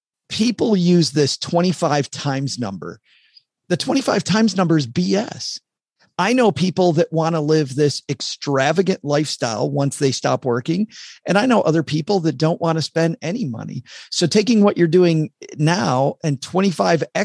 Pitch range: 145-180 Hz